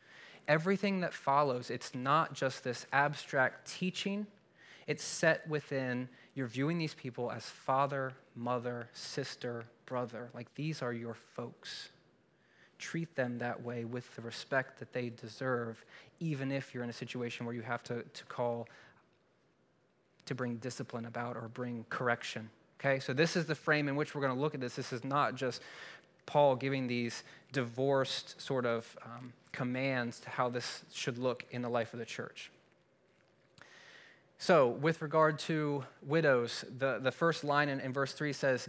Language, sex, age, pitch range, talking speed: English, male, 20-39, 125-155 Hz, 165 wpm